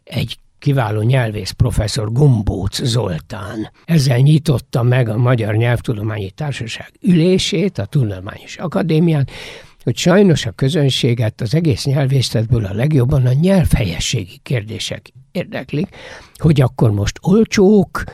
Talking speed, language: 110 wpm, Hungarian